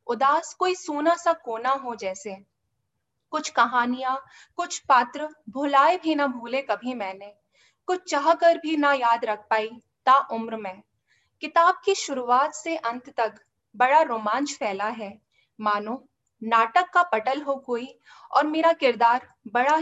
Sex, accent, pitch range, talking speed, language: female, native, 225-310 Hz, 130 wpm, Hindi